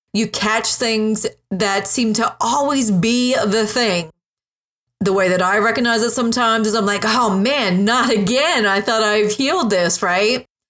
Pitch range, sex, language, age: 190-230 Hz, female, English, 30-49